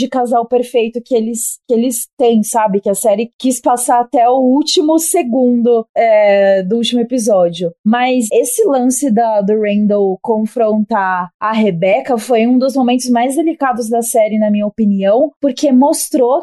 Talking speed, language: 160 wpm, Portuguese